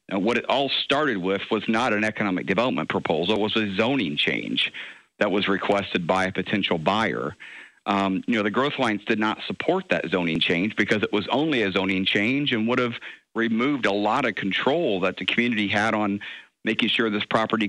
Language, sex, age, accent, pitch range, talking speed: English, male, 50-69, American, 95-115 Hz, 205 wpm